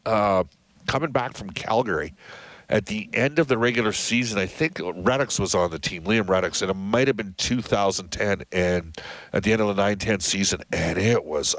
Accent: American